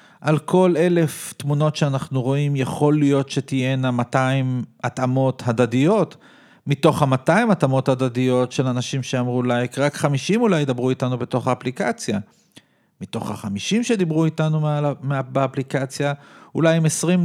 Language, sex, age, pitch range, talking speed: Hebrew, male, 40-59, 125-160 Hz, 120 wpm